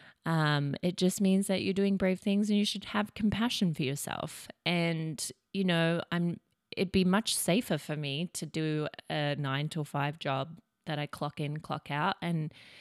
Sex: female